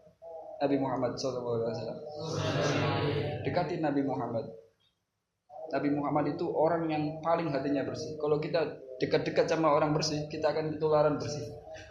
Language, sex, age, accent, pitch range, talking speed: Indonesian, male, 20-39, native, 135-160 Hz, 120 wpm